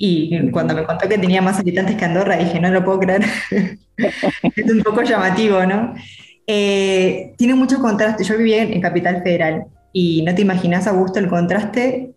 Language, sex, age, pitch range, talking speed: Spanish, female, 20-39, 160-195 Hz, 180 wpm